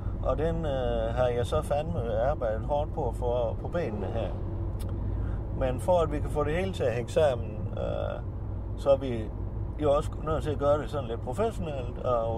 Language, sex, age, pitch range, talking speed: Danish, male, 60-79, 100-120 Hz, 205 wpm